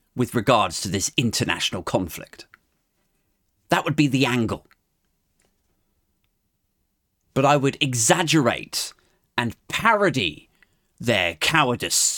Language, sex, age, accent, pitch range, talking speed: English, male, 40-59, British, 130-205 Hz, 95 wpm